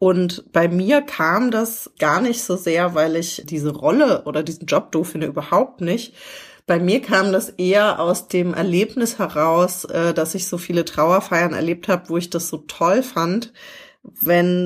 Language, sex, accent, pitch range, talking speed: English, female, German, 165-195 Hz, 175 wpm